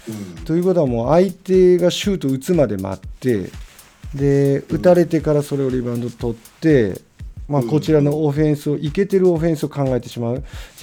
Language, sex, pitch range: Japanese, male, 110-155 Hz